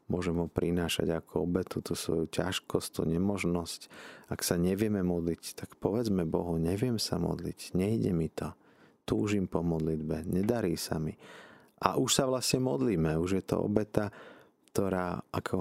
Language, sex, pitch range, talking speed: Slovak, male, 85-100 Hz, 160 wpm